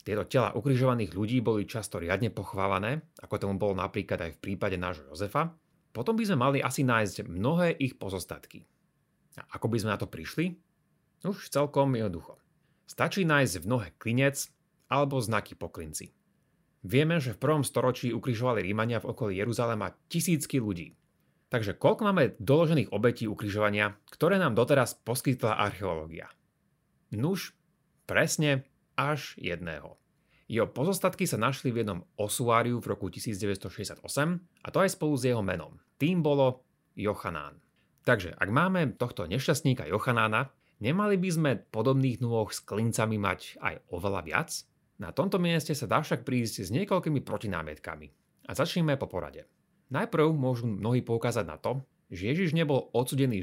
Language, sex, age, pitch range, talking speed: Slovak, male, 30-49, 105-150 Hz, 150 wpm